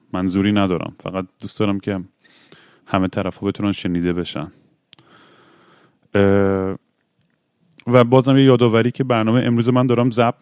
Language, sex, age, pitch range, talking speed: Persian, male, 30-49, 100-120 Hz, 120 wpm